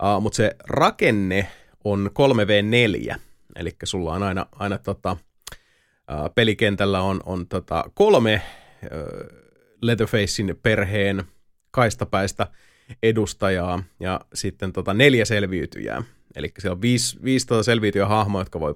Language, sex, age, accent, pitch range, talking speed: Finnish, male, 30-49, native, 95-110 Hz, 120 wpm